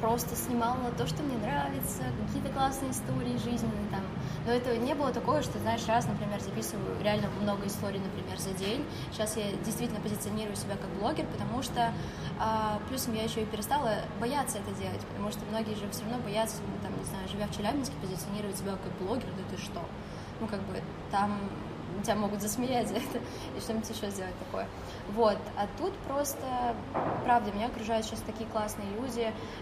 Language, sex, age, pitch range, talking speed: Russian, female, 20-39, 205-225 Hz, 180 wpm